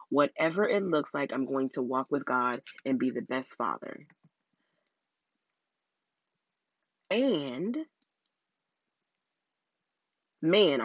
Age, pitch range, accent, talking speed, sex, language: 30-49, 135-215 Hz, American, 95 wpm, female, English